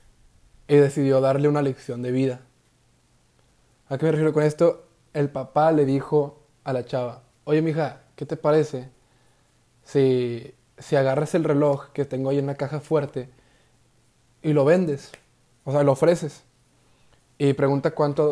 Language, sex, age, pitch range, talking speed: Spanish, male, 20-39, 130-155 Hz, 155 wpm